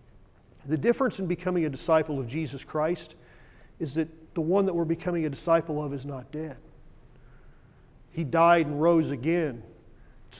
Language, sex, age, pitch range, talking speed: English, male, 40-59, 135-170 Hz, 160 wpm